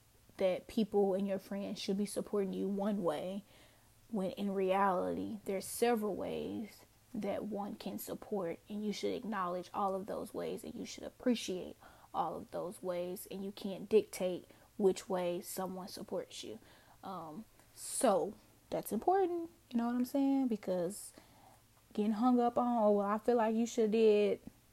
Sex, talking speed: female, 165 wpm